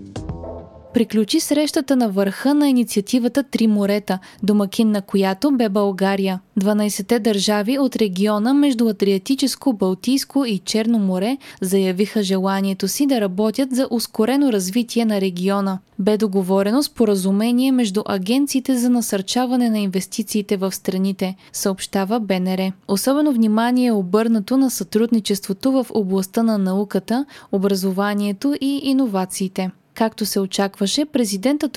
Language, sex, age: Bulgarian, female, 20-39